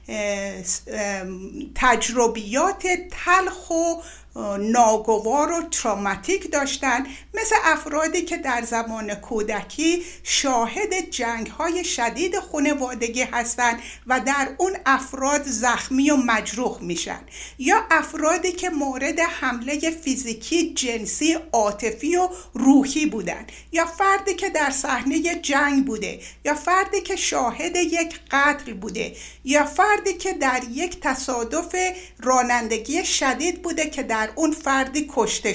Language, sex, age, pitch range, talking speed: Persian, female, 50-69, 240-350 Hz, 115 wpm